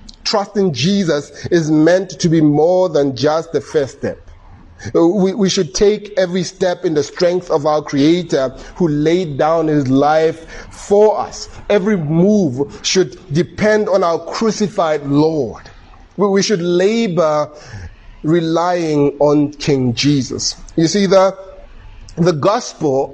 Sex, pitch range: male, 145-190 Hz